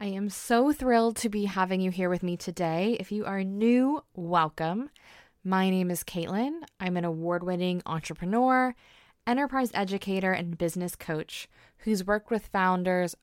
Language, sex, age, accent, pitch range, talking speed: English, female, 20-39, American, 175-225 Hz, 155 wpm